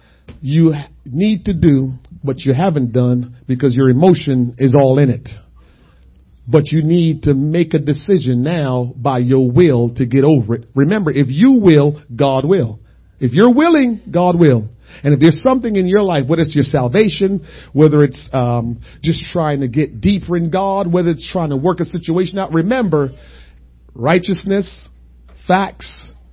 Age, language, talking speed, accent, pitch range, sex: 40-59, English, 165 wpm, American, 120-180 Hz, male